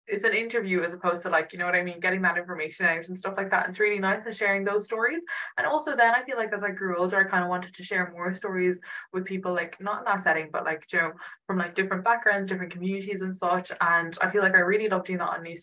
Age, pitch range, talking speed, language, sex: 20-39, 170-200 Hz, 290 wpm, English, female